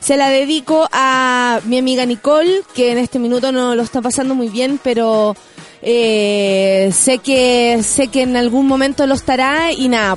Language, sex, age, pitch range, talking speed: Spanish, female, 30-49, 240-335 Hz, 175 wpm